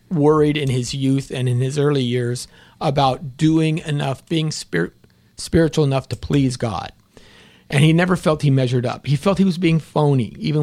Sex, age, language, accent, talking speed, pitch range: male, 40-59, English, American, 180 wpm, 120-145 Hz